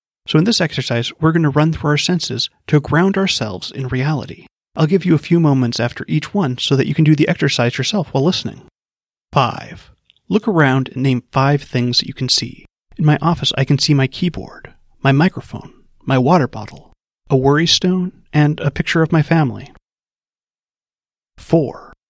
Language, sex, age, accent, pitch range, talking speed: English, male, 30-49, American, 130-165 Hz, 185 wpm